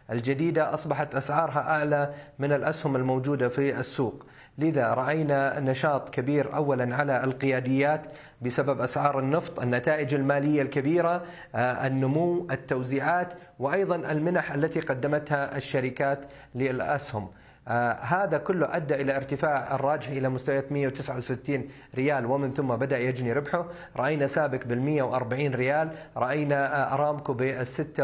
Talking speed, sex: 120 wpm, male